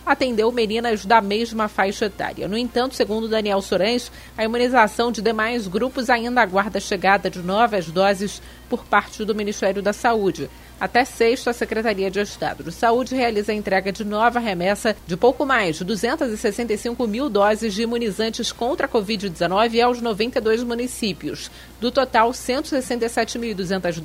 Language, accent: Portuguese, Brazilian